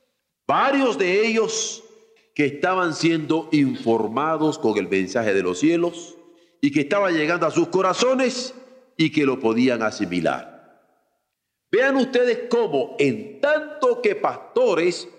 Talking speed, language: 125 wpm, Spanish